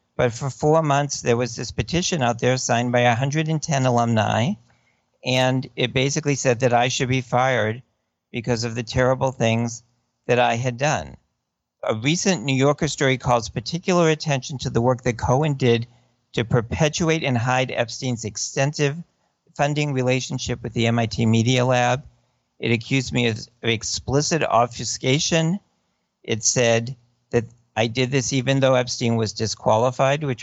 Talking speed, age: 150 wpm, 50-69